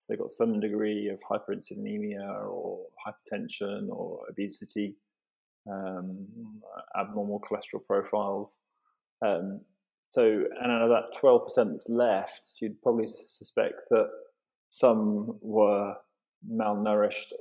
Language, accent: English, British